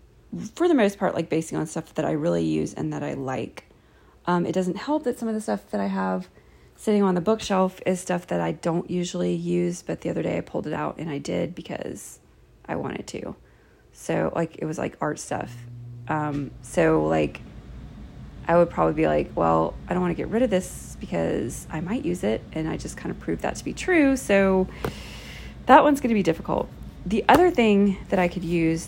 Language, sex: English, female